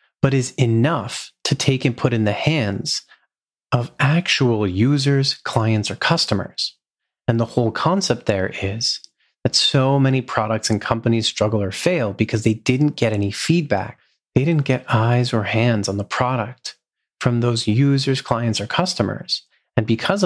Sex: male